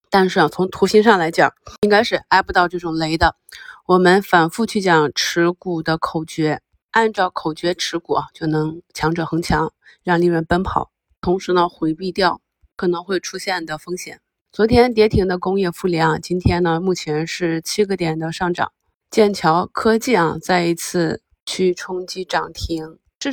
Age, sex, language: 20-39, female, Chinese